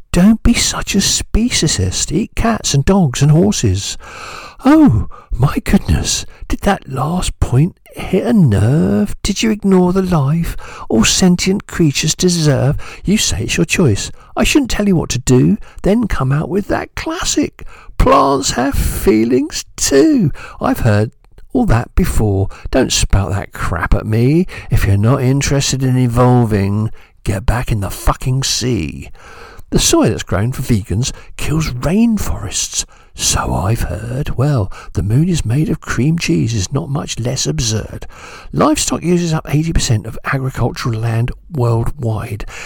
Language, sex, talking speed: English, male, 150 wpm